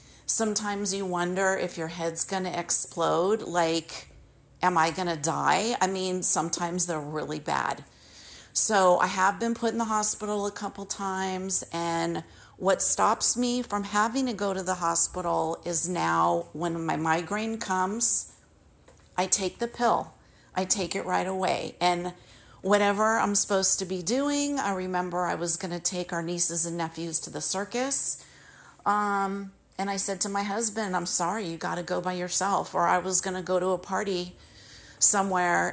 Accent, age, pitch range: American, 40-59, 175-200 Hz